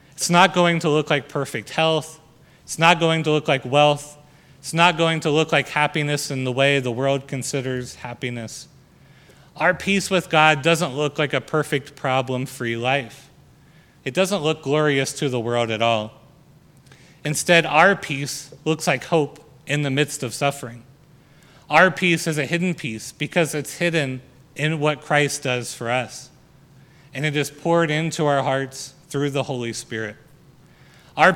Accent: American